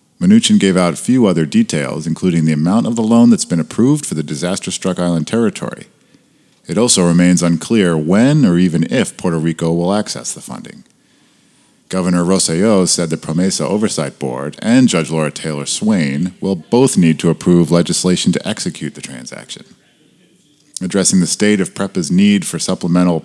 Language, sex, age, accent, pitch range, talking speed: English, male, 40-59, American, 80-105 Hz, 170 wpm